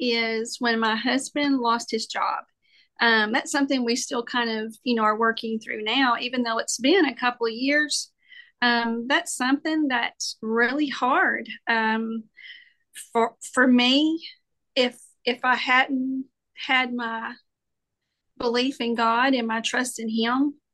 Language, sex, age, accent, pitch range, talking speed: English, female, 40-59, American, 230-270 Hz, 150 wpm